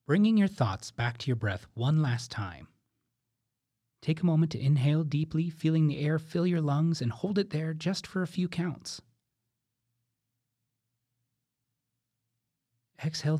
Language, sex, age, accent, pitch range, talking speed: English, male, 30-49, American, 115-150 Hz, 145 wpm